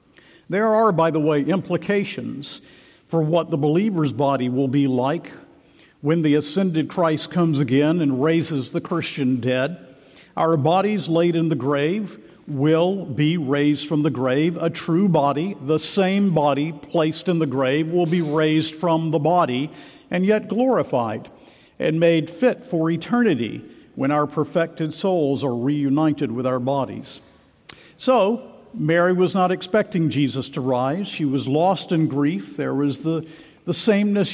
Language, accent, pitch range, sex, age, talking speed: English, American, 145-185 Hz, male, 50-69, 155 wpm